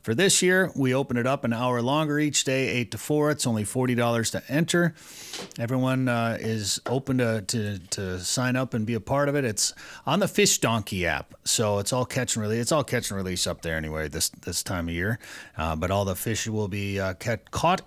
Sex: male